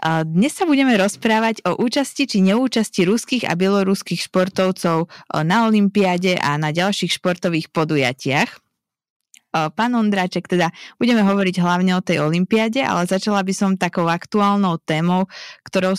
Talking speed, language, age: 135 wpm, Slovak, 20-39